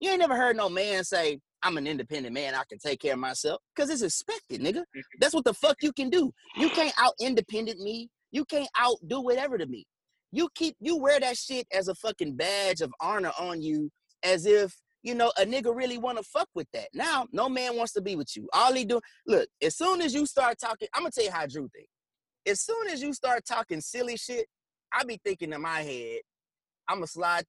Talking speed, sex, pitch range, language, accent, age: 235 wpm, male, 170-275 Hz, English, American, 30-49